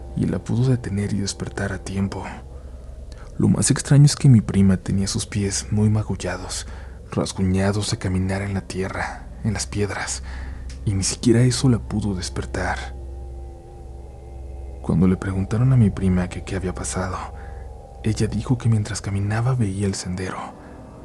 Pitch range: 90-105 Hz